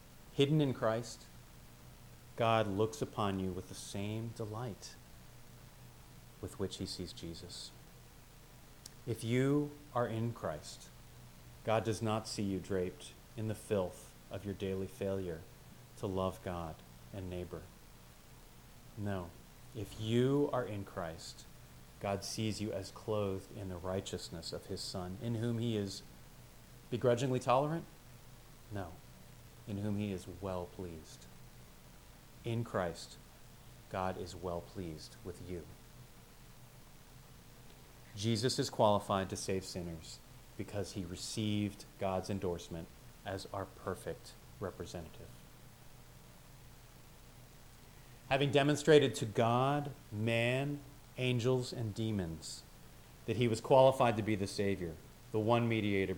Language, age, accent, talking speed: English, 30-49, American, 120 wpm